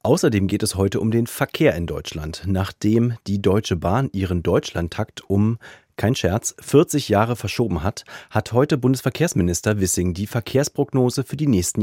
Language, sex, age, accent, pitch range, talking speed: German, male, 40-59, German, 95-130 Hz, 155 wpm